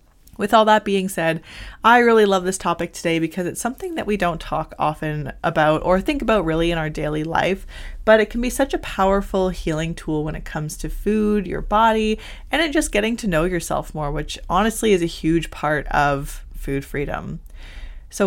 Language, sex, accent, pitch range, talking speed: English, female, American, 160-205 Hz, 205 wpm